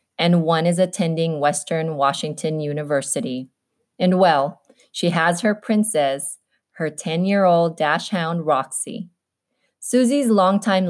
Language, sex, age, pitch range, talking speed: English, female, 20-39, 155-195 Hz, 110 wpm